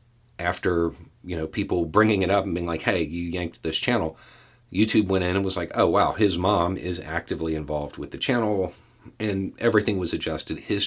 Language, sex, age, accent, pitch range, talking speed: English, male, 40-59, American, 85-115 Hz, 200 wpm